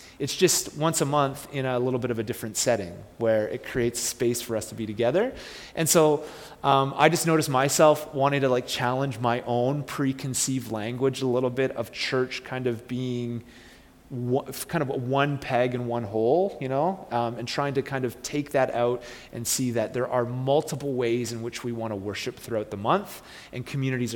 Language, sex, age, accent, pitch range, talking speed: English, male, 30-49, American, 120-150 Hz, 200 wpm